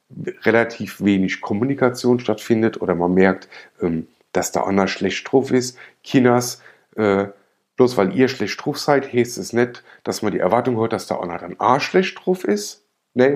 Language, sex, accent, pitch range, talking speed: German, male, German, 95-125 Hz, 165 wpm